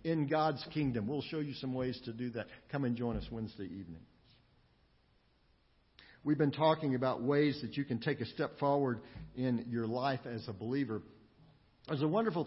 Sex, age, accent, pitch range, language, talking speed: male, 50-69, American, 120-155 Hz, English, 185 wpm